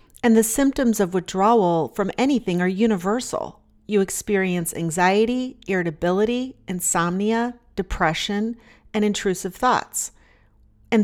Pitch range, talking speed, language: 175-220 Hz, 105 wpm, English